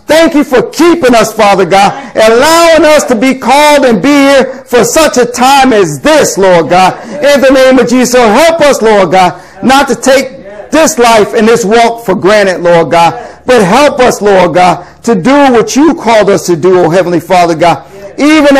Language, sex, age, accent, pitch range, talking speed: English, male, 40-59, American, 185-250 Hz, 200 wpm